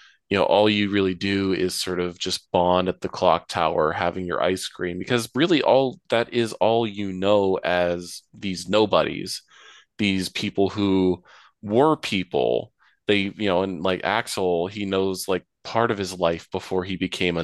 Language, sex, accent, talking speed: English, male, American, 180 wpm